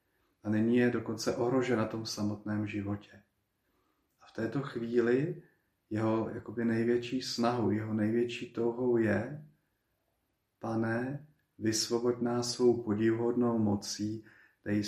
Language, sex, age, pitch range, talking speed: Slovak, male, 40-59, 100-115 Hz, 115 wpm